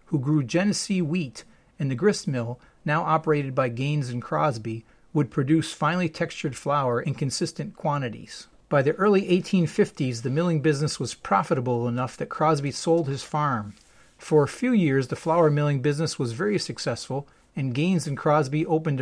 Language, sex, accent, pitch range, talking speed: English, male, American, 135-170 Hz, 165 wpm